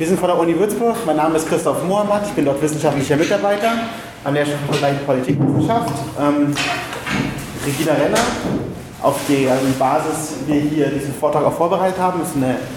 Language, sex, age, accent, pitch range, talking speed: German, male, 30-49, German, 140-185 Hz, 175 wpm